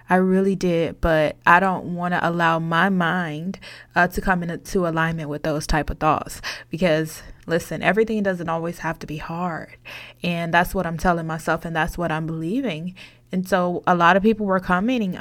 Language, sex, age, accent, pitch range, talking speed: English, female, 20-39, American, 175-200 Hz, 195 wpm